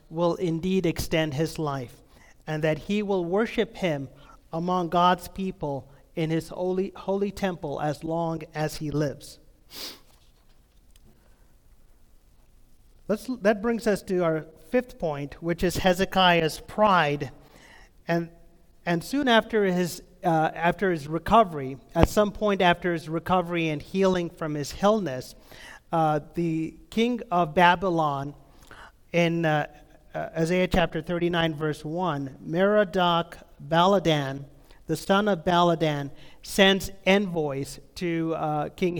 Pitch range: 155-190 Hz